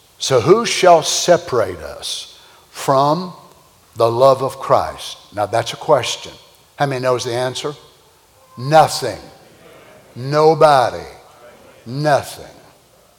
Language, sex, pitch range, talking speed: English, male, 130-180 Hz, 100 wpm